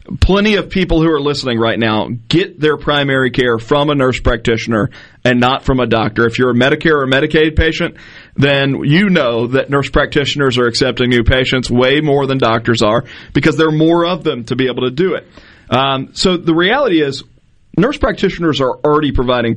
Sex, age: male, 40-59